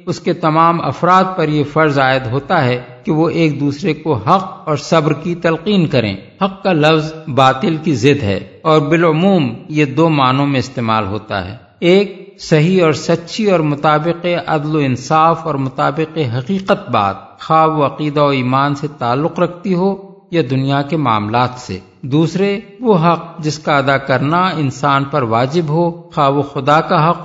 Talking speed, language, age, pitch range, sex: 175 wpm, Urdu, 50-69, 135-170 Hz, male